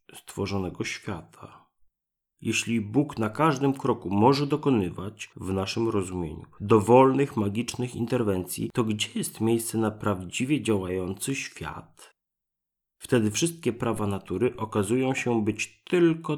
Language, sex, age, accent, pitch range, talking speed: Polish, male, 30-49, native, 100-125 Hz, 115 wpm